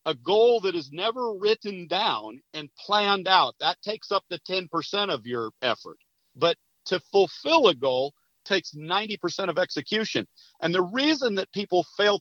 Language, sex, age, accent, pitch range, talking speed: English, male, 50-69, American, 170-215 Hz, 160 wpm